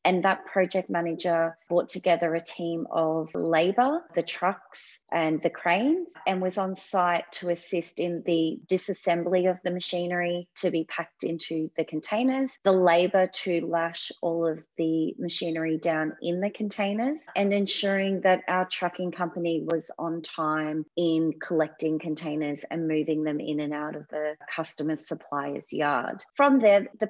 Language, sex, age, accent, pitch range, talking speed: English, female, 30-49, Australian, 160-190 Hz, 155 wpm